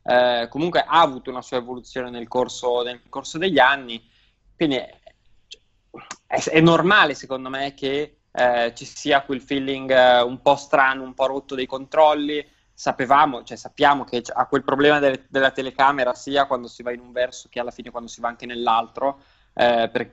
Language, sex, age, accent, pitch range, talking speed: Italian, male, 20-39, native, 120-145 Hz, 175 wpm